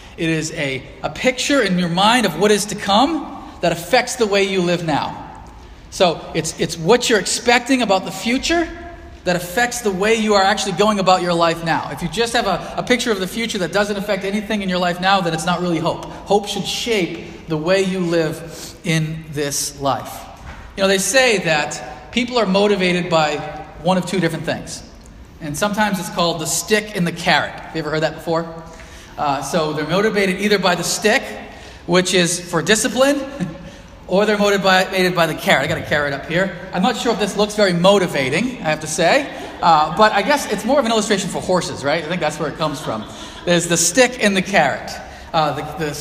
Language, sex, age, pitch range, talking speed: English, male, 30-49, 160-210 Hz, 220 wpm